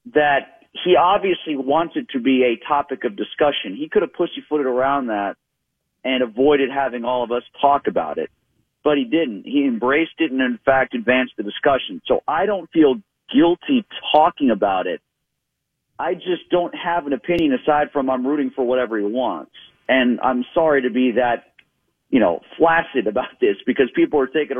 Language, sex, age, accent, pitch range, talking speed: English, male, 40-59, American, 130-170 Hz, 180 wpm